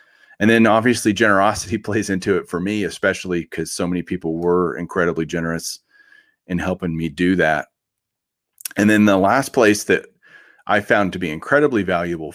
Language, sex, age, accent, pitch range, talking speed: English, male, 40-59, American, 90-120 Hz, 165 wpm